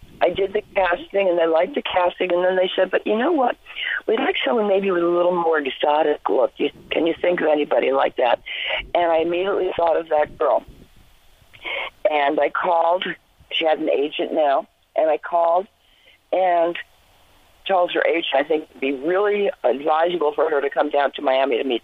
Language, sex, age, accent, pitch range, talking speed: English, female, 50-69, American, 150-200 Hz, 200 wpm